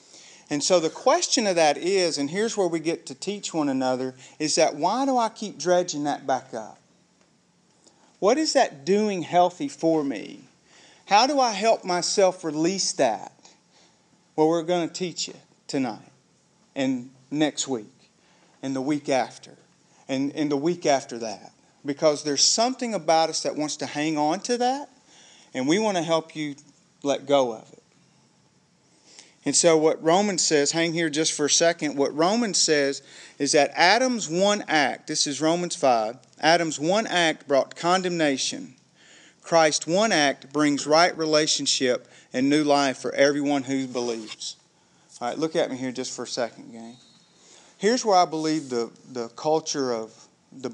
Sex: male